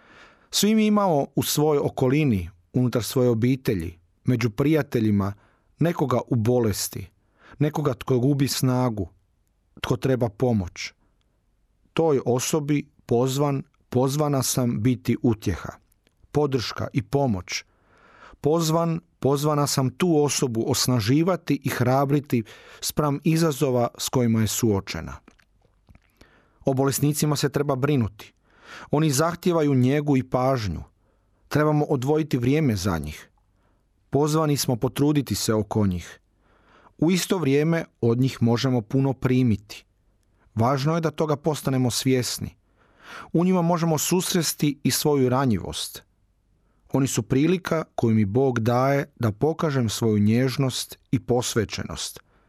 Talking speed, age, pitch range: 115 wpm, 40-59, 110-145 Hz